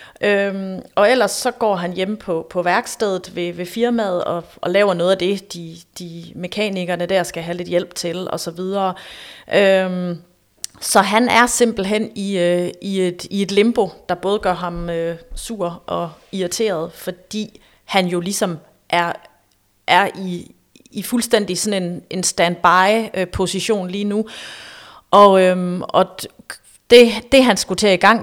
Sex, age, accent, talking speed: female, 30-49, native, 165 wpm